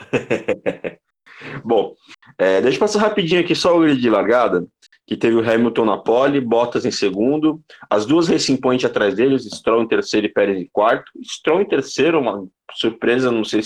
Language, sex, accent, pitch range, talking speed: Portuguese, male, Brazilian, 120-150 Hz, 185 wpm